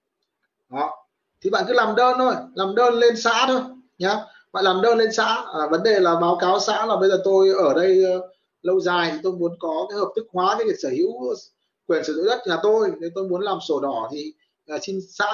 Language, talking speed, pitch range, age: Vietnamese, 240 wpm, 190-295 Hz, 20-39